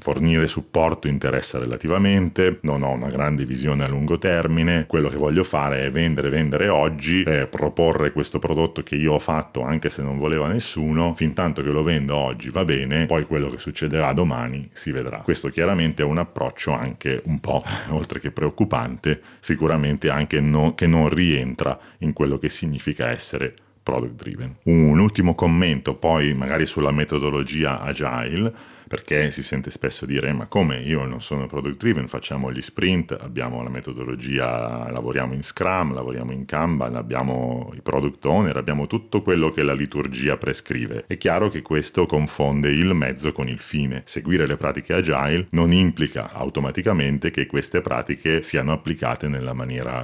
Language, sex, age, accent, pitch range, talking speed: Italian, male, 40-59, native, 70-80 Hz, 165 wpm